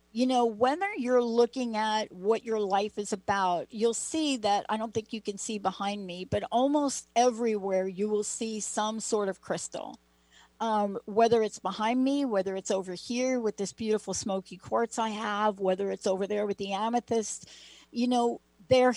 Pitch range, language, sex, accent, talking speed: 190-235 Hz, English, female, American, 185 wpm